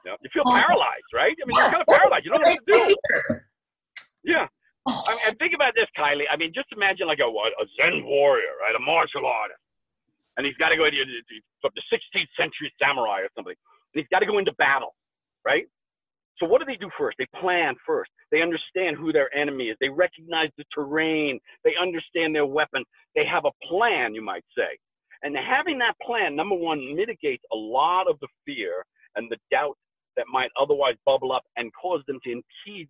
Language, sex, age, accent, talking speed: English, male, 50-69, American, 200 wpm